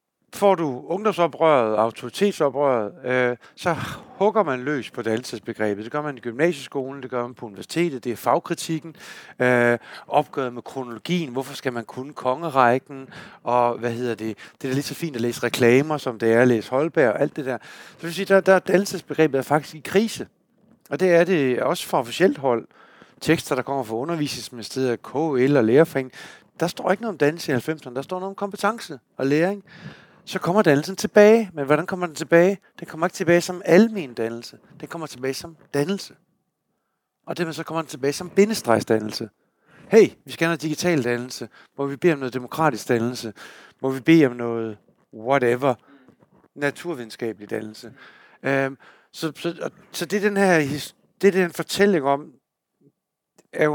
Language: Danish